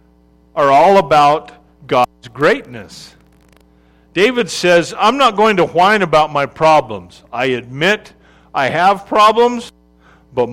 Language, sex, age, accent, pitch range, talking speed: English, male, 50-69, American, 125-185 Hz, 120 wpm